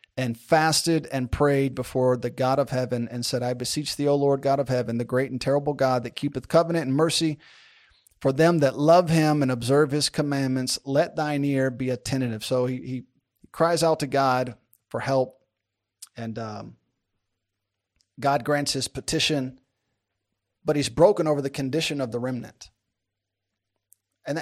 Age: 30-49